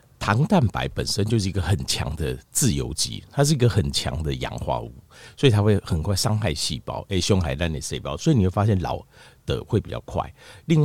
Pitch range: 85-125 Hz